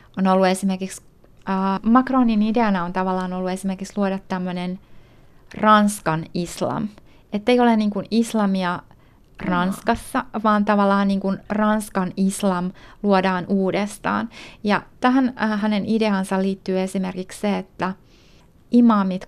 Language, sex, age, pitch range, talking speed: Finnish, female, 30-49, 190-220 Hz, 115 wpm